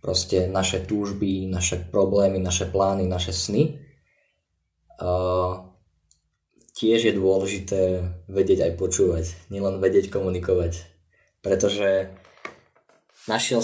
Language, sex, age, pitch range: Slovak, male, 20-39, 95-115 Hz